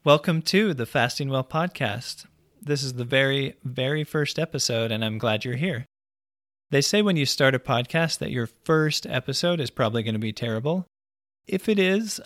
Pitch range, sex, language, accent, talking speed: 115-150 Hz, male, English, American, 180 wpm